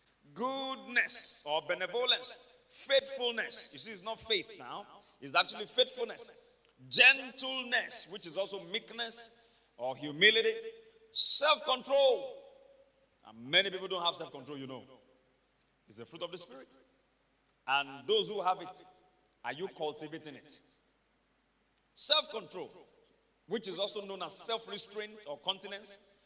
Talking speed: 120 wpm